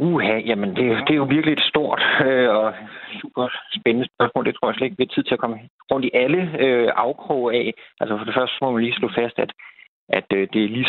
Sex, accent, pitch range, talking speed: male, native, 100-120 Hz, 240 wpm